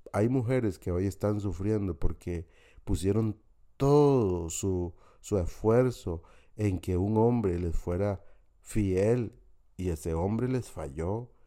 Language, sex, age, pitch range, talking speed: Spanish, male, 50-69, 90-115 Hz, 125 wpm